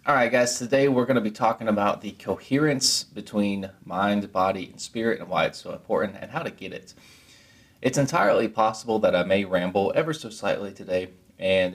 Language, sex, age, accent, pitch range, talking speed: English, male, 20-39, American, 95-120 Hz, 195 wpm